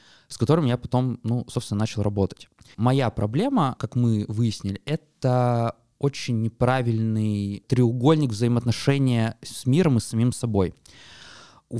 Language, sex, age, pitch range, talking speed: Russian, male, 20-39, 115-140 Hz, 125 wpm